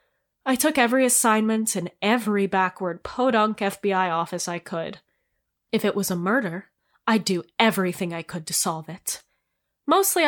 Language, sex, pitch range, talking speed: English, female, 180-250 Hz, 150 wpm